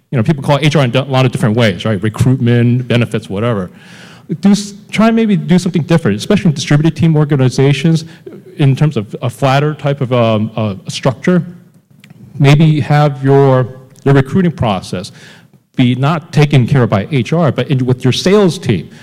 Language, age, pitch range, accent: English, 40-59, 115-150 Hz, American